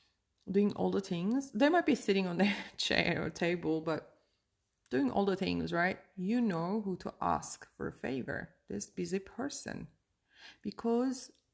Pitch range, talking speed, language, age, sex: 180-225 Hz, 160 wpm, English, 30-49, female